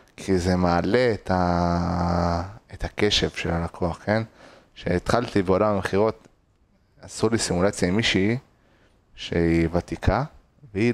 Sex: male